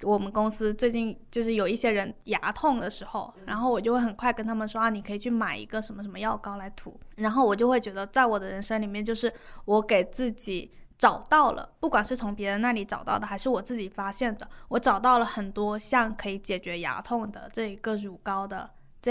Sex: female